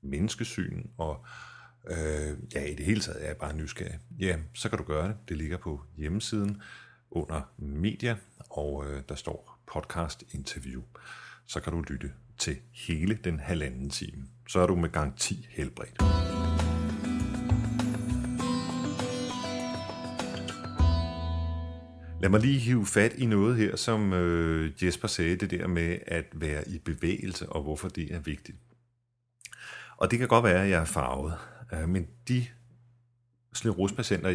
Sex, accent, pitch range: male, native, 80-110 Hz